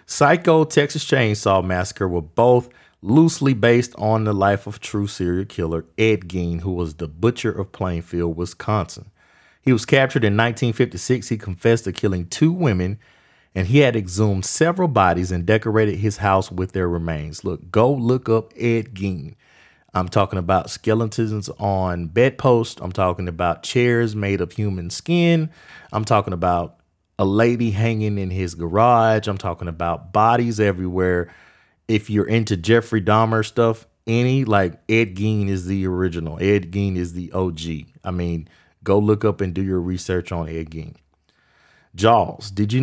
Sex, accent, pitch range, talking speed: male, American, 90-115 Hz, 160 wpm